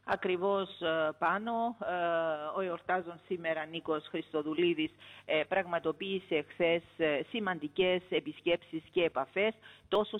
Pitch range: 150-190 Hz